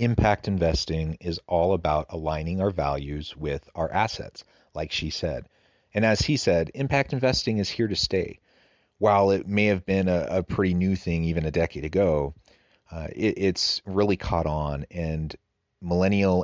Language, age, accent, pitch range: English, 30-49, American, 80-100 Hz